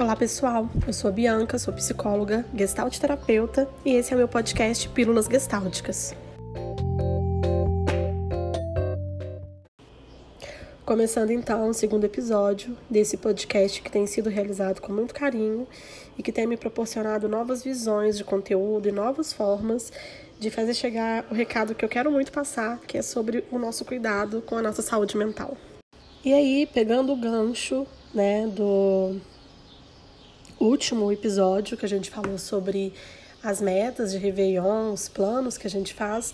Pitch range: 205-240 Hz